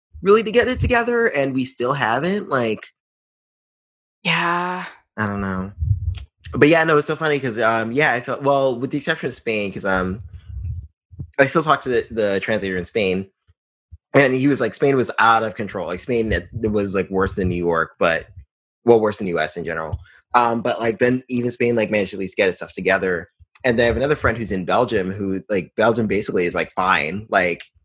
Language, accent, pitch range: English, American, 95-130 Hz